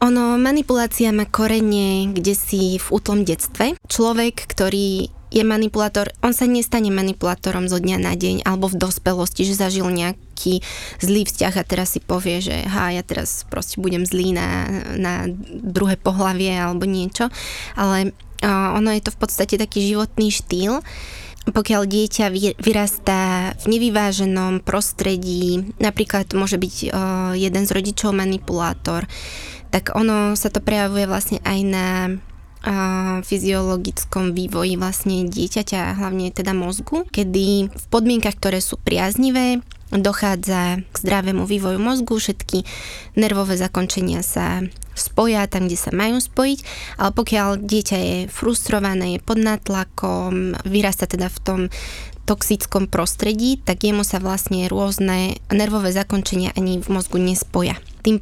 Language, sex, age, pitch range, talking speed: Slovak, female, 20-39, 185-210 Hz, 140 wpm